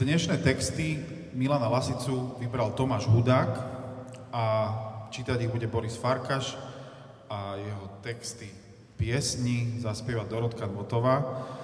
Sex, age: male, 40-59